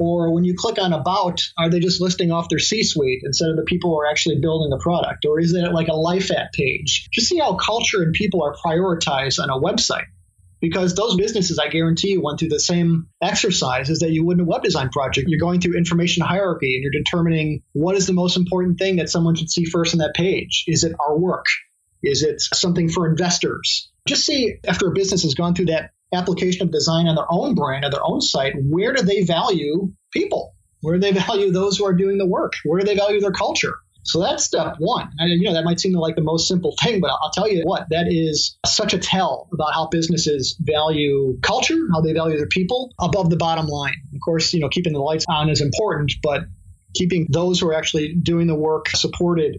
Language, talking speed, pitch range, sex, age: English, 235 wpm, 155-185 Hz, male, 30-49